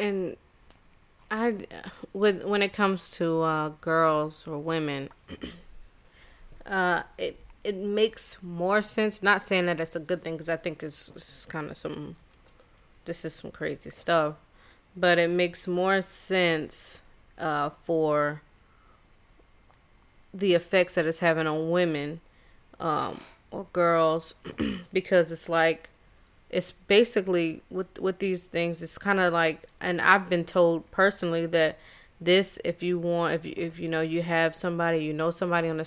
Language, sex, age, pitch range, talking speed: English, female, 20-39, 165-190 Hz, 150 wpm